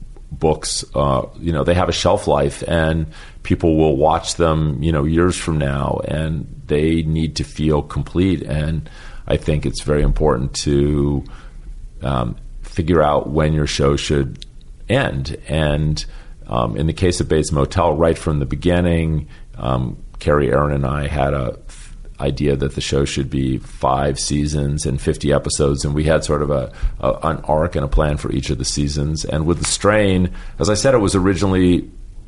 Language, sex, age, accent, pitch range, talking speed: English, male, 40-59, American, 70-80 Hz, 180 wpm